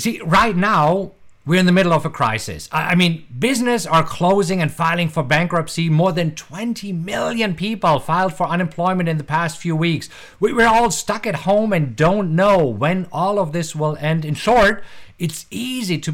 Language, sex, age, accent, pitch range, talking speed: English, male, 50-69, German, 140-205 Hz, 190 wpm